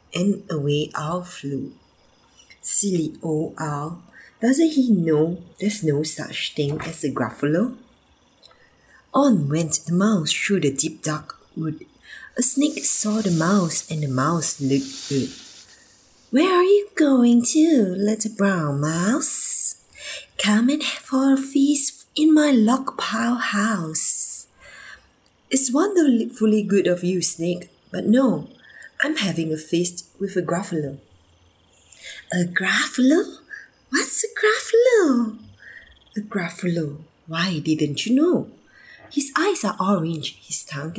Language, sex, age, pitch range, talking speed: English, female, 30-49, 155-255 Hz, 125 wpm